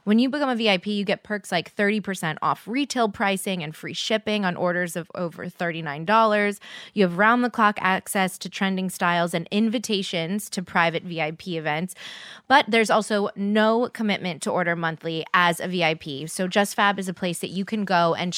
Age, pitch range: 20-39, 180-220 Hz